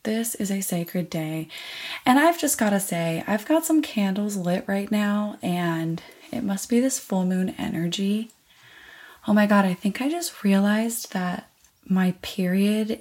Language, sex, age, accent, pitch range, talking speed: English, female, 20-39, American, 180-235 Hz, 165 wpm